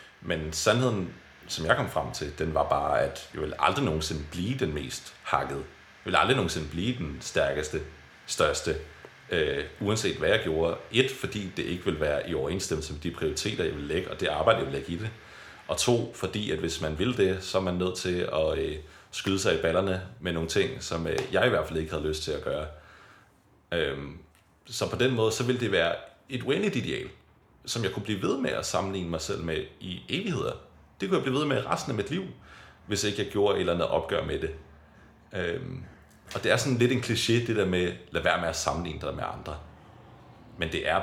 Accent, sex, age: native, male, 30-49